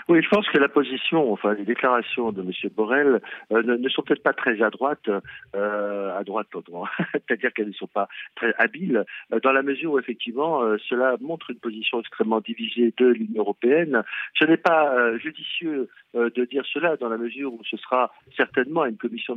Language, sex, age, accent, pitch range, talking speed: French, male, 50-69, French, 110-140 Hz, 205 wpm